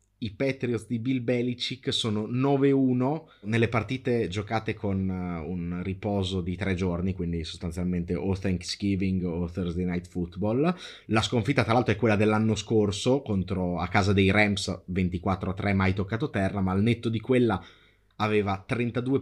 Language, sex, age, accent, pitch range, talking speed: Italian, male, 30-49, native, 100-130 Hz, 150 wpm